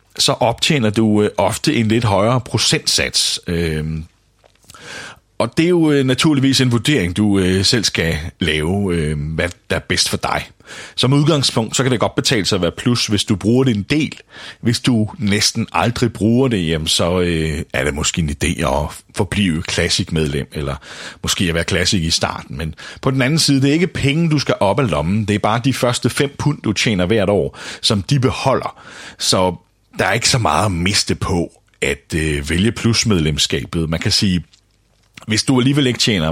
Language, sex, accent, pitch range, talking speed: Danish, male, native, 85-120 Hz, 190 wpm